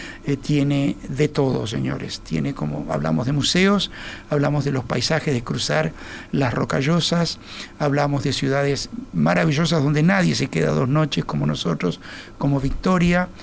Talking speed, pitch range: 145 wpm, 135-165 Hz